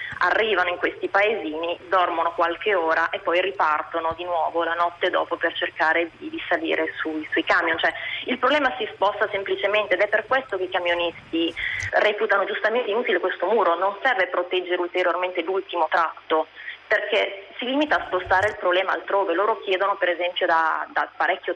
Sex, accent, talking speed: female, native, 175 wpm